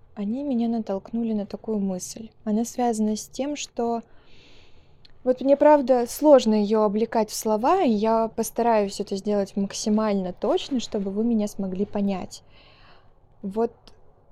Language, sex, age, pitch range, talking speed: Russian, female, 20-39, 205-245 Hz, 135 wpm